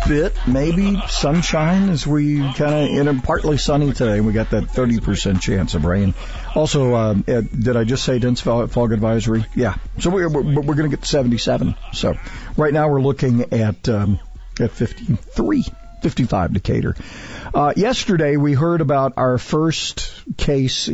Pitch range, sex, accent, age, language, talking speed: 110-135 Hz, male, American, 50-69, English, 170 wpm